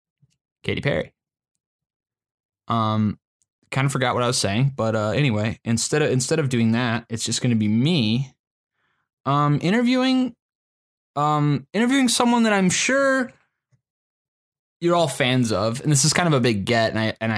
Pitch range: 110-145 Hz